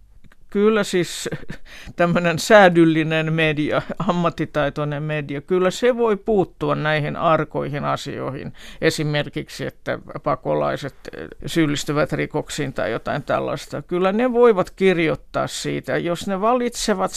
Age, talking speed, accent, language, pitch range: 60-79, 105 wpm, native, Finnish, 155-190 Hz